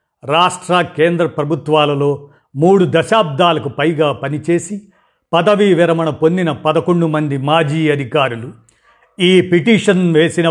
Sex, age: male, 50-69